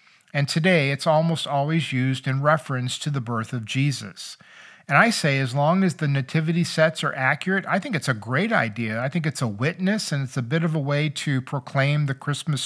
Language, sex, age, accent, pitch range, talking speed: English, male, 50-69, American, 135-170 Hz, 220 wpm